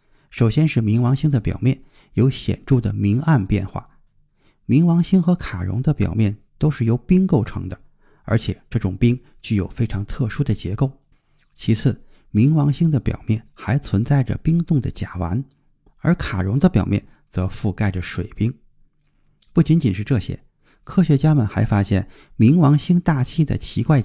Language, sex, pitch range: Chinese, male, 105-145 Hz